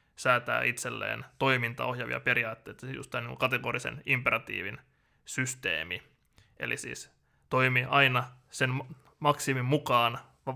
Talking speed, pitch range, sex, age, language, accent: 90 wpm, 120-145 Hz, male, 20-39, Finnish, native